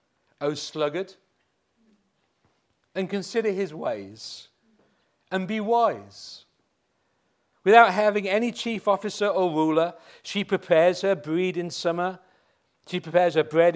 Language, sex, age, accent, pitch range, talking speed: English, male, 40-59, British, 155-200 Hz, 115 wpm